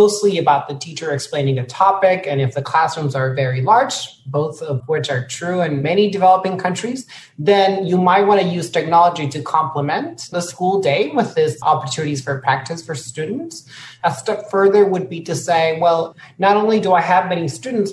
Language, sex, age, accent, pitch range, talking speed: English, male, 30-49, American, 145-185 Hz, 185 wpm